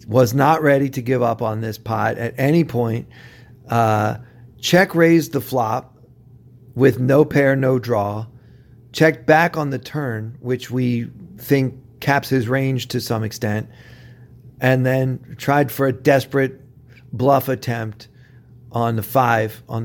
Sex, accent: male, American